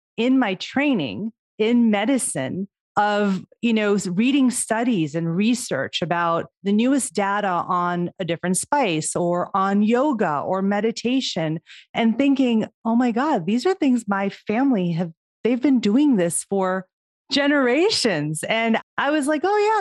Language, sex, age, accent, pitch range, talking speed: English, female, 30-49, American, 170-230 Hz, 145 wpm